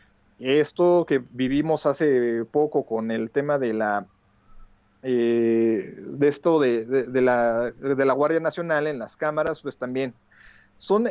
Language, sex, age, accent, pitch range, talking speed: Spanish, male, 40-59, Mexican, 120-155 Hz, 145 wpm